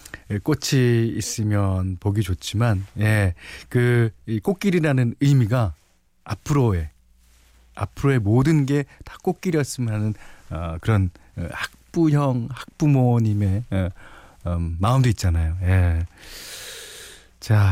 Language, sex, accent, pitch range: Korean, male, native, 95-145 Hz